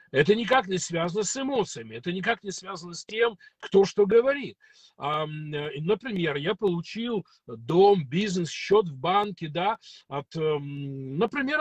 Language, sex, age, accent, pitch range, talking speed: Russian, male, 50-69, native, 170-225 Hz, 135 wpm